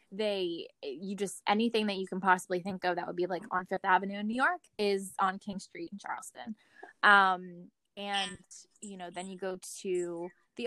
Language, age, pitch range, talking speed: English, 20-39, 185-230 Hz, 195 wpm